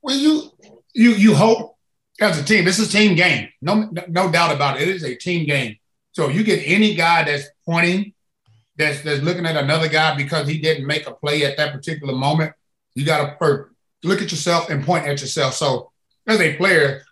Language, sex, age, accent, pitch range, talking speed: English, male, 30-49, American, 145-180 Hz, 215 wpm